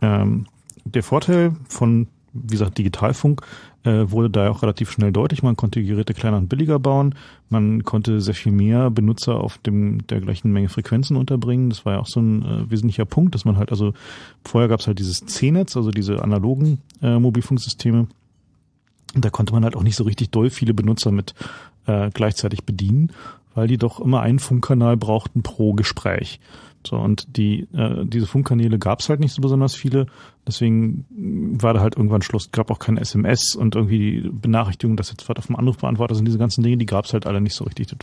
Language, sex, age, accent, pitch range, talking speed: German, male, 40-59, German, 105-120 Hz, 205 wpm